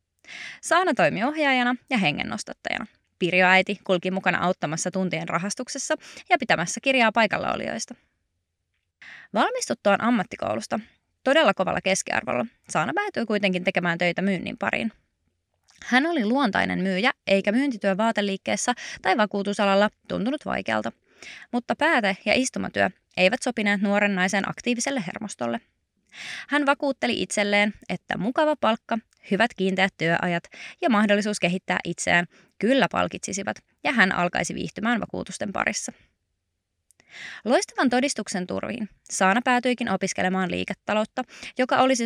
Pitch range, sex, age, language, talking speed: 180-245 Hz, female, 20-39, Finnish, 115 wpm